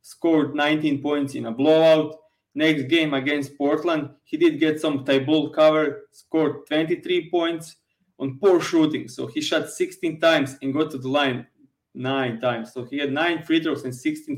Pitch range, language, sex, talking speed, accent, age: 130-155 Hz, English, male, 175 wpm, Serbian, 20-39